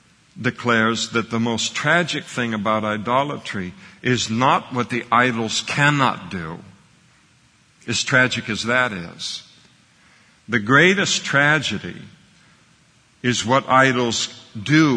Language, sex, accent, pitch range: English, male, American, 110-130 Hz